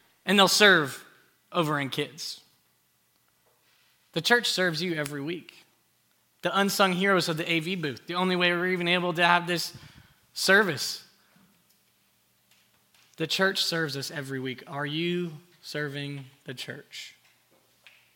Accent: American